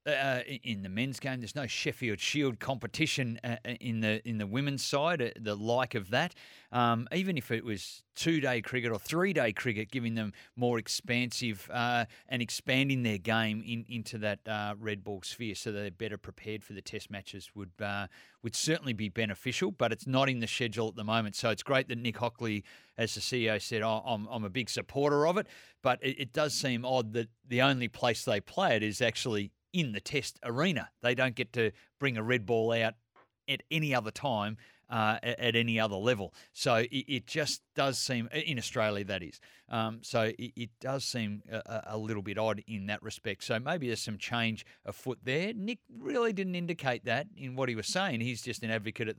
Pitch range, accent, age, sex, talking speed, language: 110-130 Hz, Australian, 30-49, male, 215 wpm, English